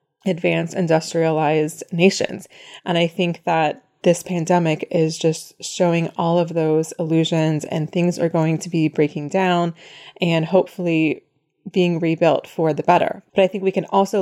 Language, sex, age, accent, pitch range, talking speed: English, female, 20-39, American, 165-185 Hz, 155 wpm